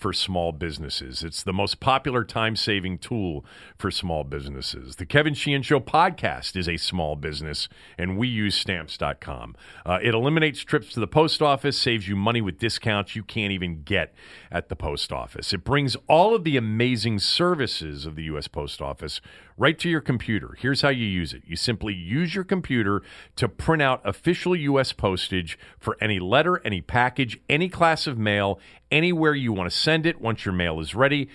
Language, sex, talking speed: English, male, 185 wpm